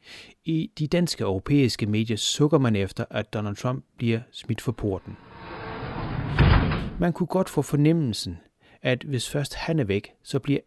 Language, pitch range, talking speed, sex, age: Danish, 110-155 Hz, 155 wpm, male, 30-49